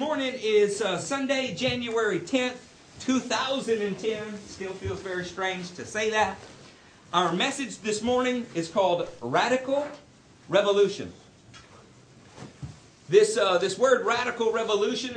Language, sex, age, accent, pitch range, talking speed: English, male, 50-69, American, 160-230 Hz, 110 wpm